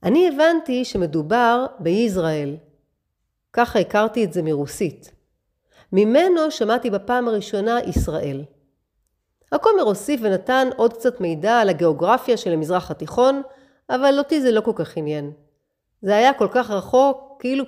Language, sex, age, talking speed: Hebrew, female, 40-59, 130 wpm